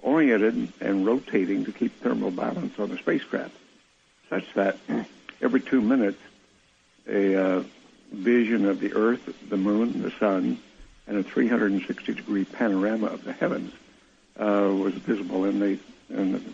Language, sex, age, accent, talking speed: English, male, 70-89, American, 145 wpm